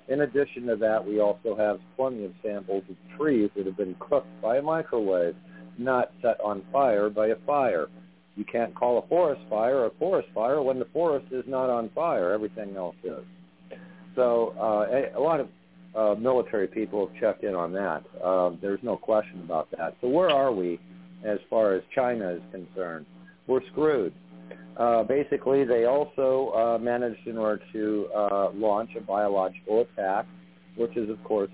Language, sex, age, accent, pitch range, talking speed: English, male, 50-69, American, 95-130 Hz, 180 wpm